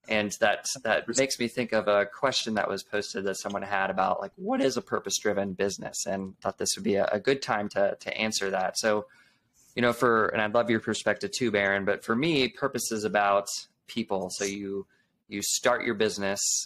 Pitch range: 100-125 Hz